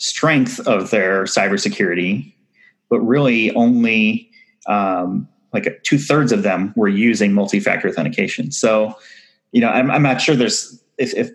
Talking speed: 145 wpm